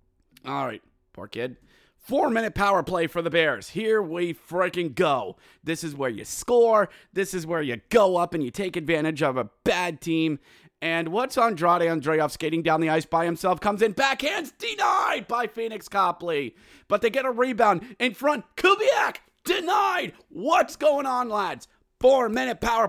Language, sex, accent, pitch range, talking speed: English, male, American, 155-230 Hz, 170 wpm